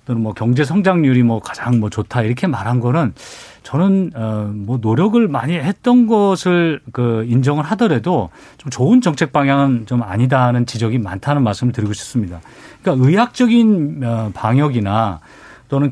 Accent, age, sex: native, 40-59, male